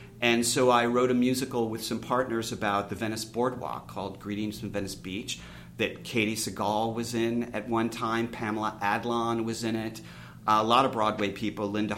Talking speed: 185 wpm